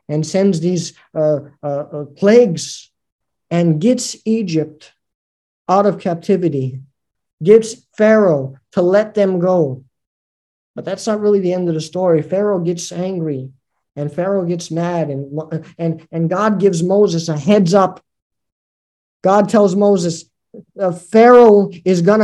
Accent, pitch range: American, 155-205 Hz